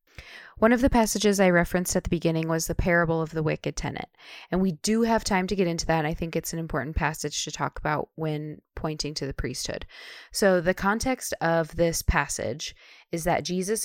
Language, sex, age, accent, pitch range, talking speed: English, female, 20-39, American, 160-200 Hz, 210 wpm